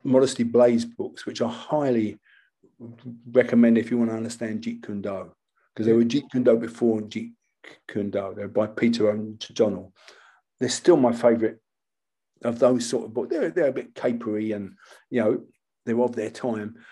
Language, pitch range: English, 115-130 Hz